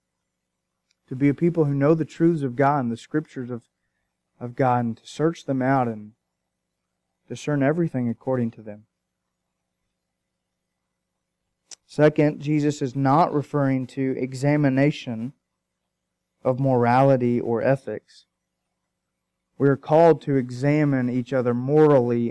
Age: 30-49